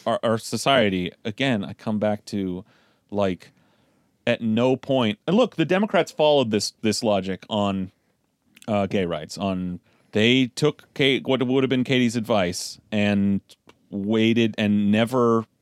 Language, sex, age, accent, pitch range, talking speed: English, male, 30-49, American, 95-120 Hz, 145 wpm